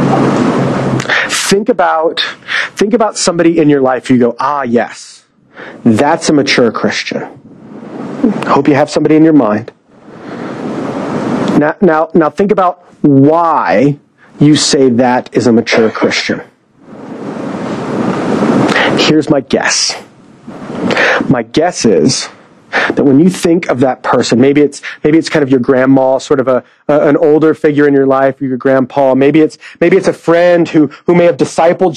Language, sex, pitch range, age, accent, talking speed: English, male, 150-200 Hz, 40-59, American, 155 wpm